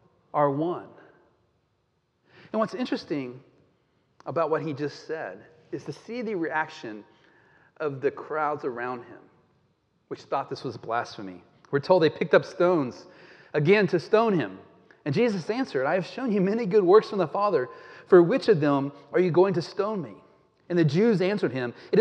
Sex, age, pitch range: male, 40-59, 140-185 Hz